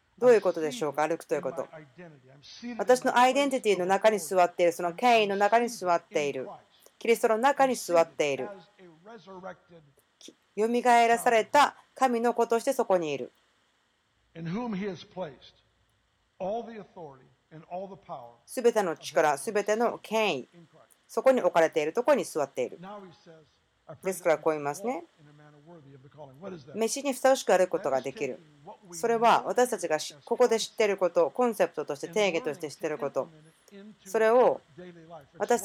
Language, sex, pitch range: Japanese, female, 165-235 Hz